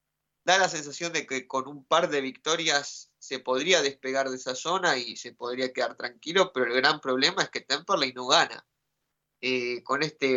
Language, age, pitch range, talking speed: Spanish, 20-39, 130-150 Hz, 190 wpm